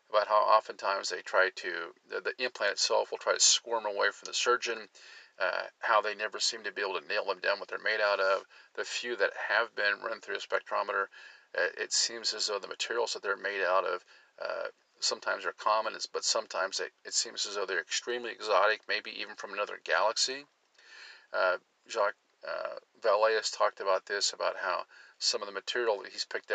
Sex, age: male, 40-59